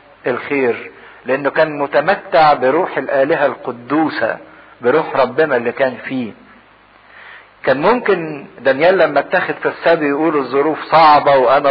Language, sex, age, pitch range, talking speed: English, male, 50-69, 135-165 Hz, 115 wpm